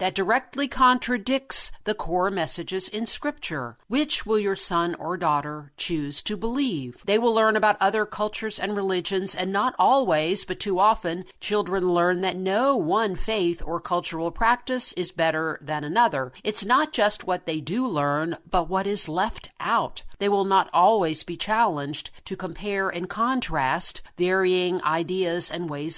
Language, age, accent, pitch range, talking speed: English, 50-69, American, 170-220 Hz, 160 wpm